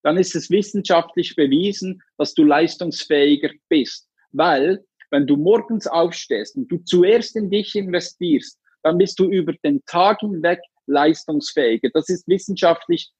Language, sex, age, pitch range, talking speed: German, male, 50-69, 165-225 Hz, 140 wpm